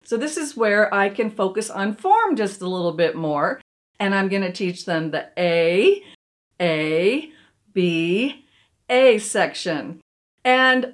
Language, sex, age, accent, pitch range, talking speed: English, female, 40-59, American, 190-250 Hz, 145 wpm